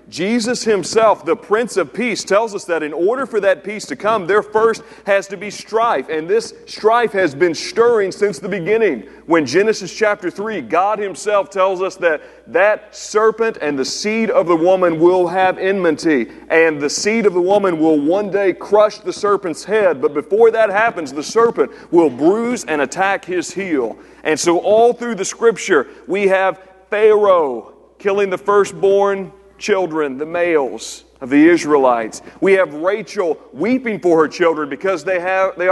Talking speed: 175 wpm